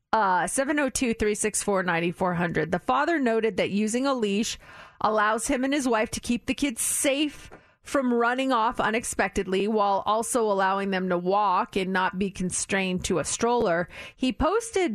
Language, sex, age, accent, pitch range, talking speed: English, female, 30-49, American, 205-260 Hz, 155 wpm